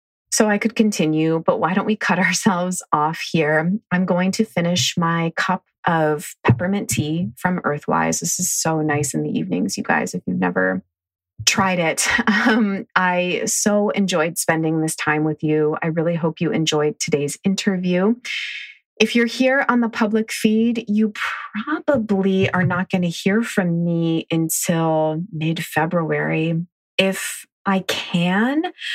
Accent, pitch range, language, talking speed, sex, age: American, 155-190 Hz, English, 155 wpm, female, 30-49